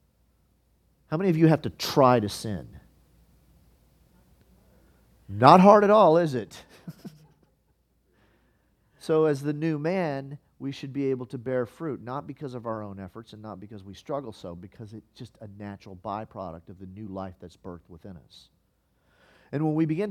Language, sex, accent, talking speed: English, male, American, 170 wpm